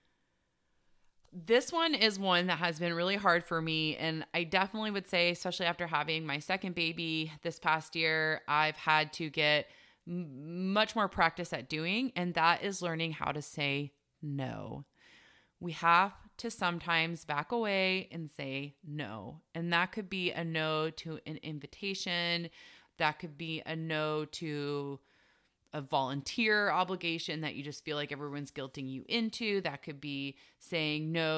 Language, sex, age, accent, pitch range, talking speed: English, female, 30-49, American, 150-185 Hz, 160 wpm